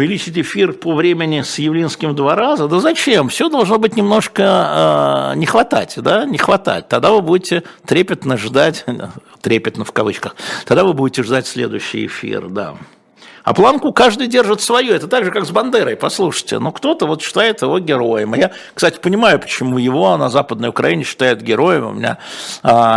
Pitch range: 120-180 Hz